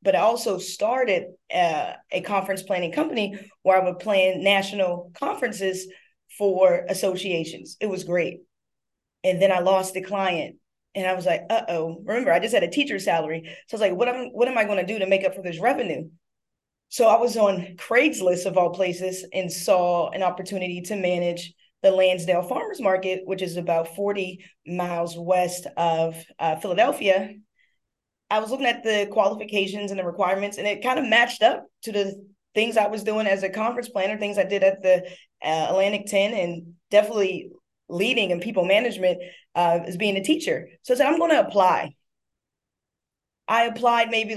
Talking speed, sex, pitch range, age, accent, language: 185 wpm, female, 185-225 Hz, 20-39, American, English